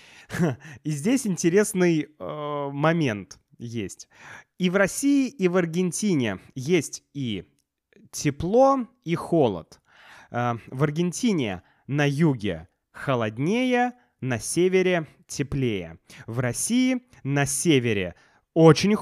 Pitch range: 125-180 Hz